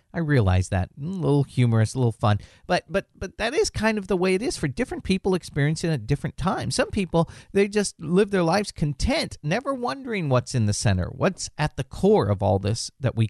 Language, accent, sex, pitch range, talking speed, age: English, American, male, 110-175 Hz, 230 wpm, 40-59